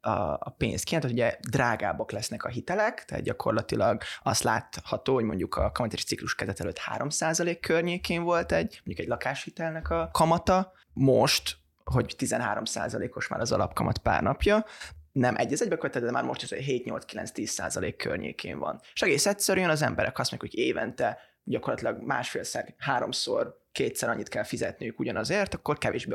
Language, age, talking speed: Hungarian, 20-39, 155 wpm